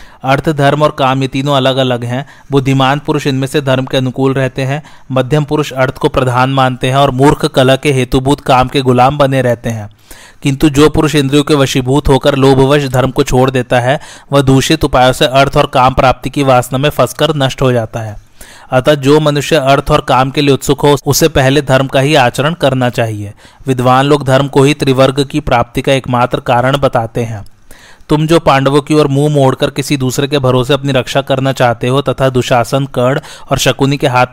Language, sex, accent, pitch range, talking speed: Hindi, male, native, 125-145 Hz, 210 wpm